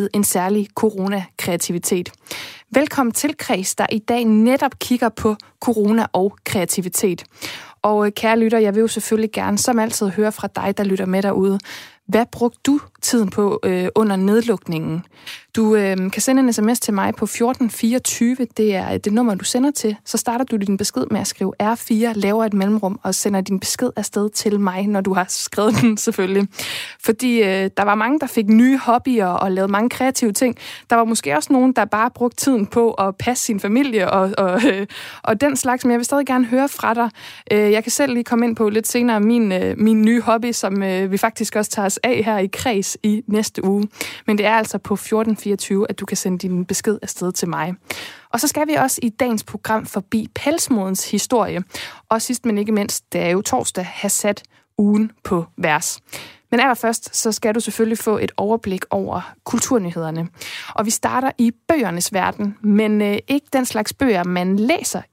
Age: 20-39